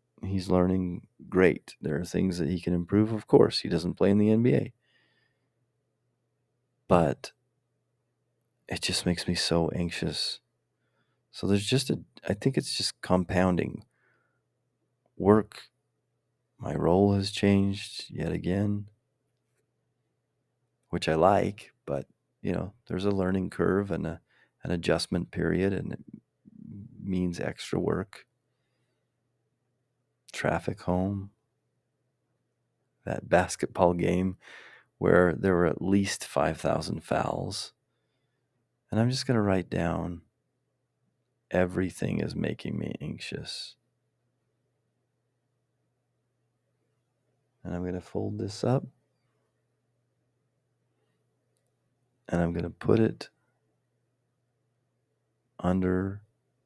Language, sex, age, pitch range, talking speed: English, male, 30-49, 90-110 Hz, 105 wpm